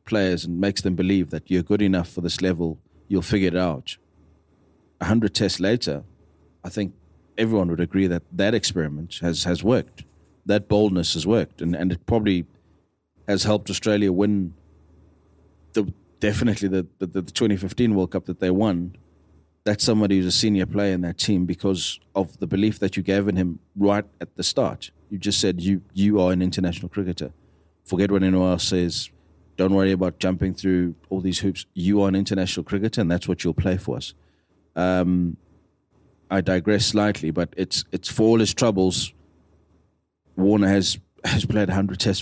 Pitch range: 85-100 Hz